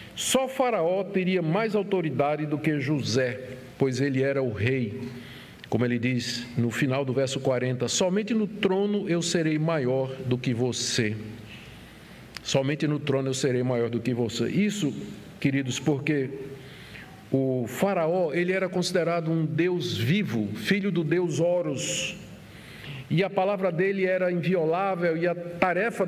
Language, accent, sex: Portuguese, Brazilian, male